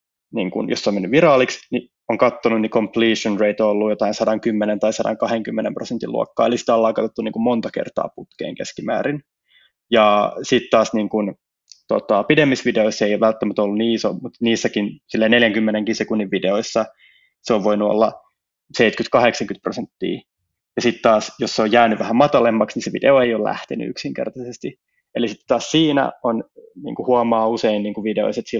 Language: Finnish